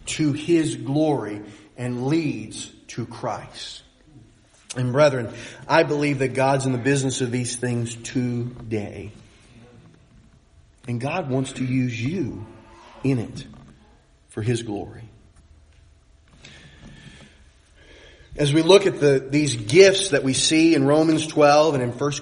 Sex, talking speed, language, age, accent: male, 125 wpm, English, 30-49, American